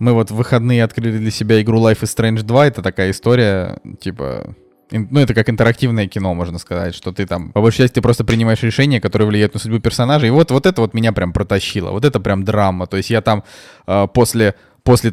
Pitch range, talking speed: 100-120 Hz, 220 wpm